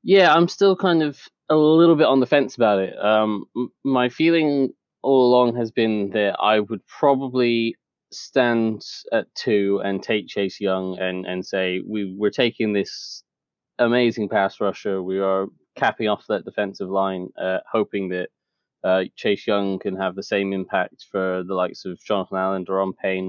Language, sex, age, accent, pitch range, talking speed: English, male, 20-39, British, 95-120 Hz, 175 wpm